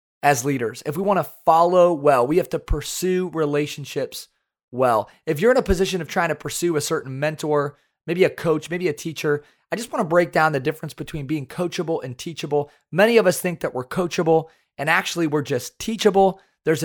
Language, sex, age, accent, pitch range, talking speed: English, male, 30-49, American, 150-190 Hz, 205 wpm